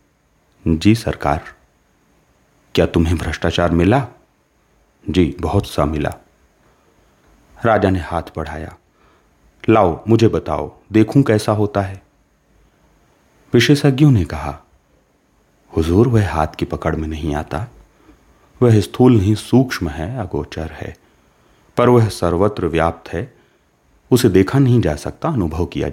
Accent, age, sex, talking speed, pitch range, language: native, 40-59, male, 120 wpm, 80-120 Hz, Hindi